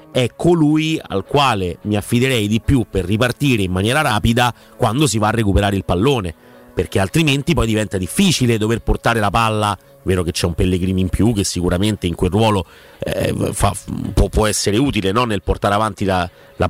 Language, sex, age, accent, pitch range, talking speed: Italian, male, 40-59, native, 95-120 Hz, 190 wpm